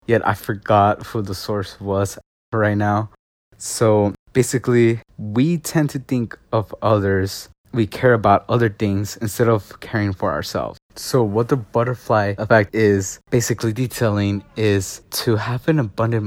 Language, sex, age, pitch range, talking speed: English, male, 20-39, 100-115 Hz, 150 wpm